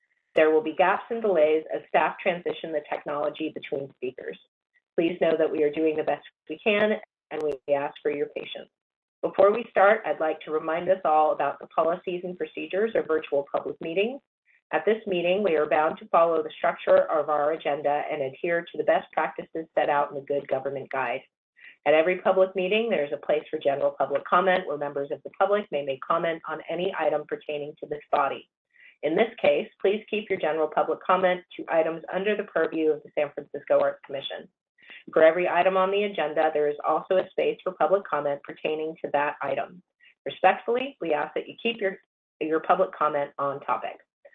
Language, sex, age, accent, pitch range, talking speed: English, female, 30-49, American, 150-190 Hz, 200 wpm